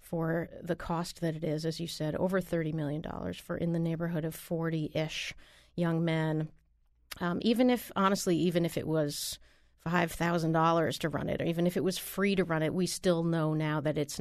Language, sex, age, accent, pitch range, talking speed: English, female, 40-59, American, 155-185 Hz, 200 wpm